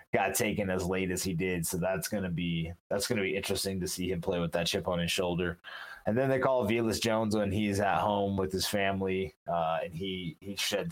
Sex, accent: male, American